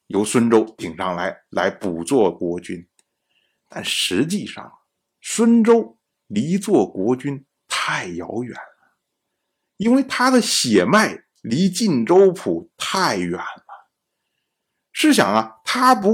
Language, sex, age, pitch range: Chinese, male, 50-69, 155-220 Hz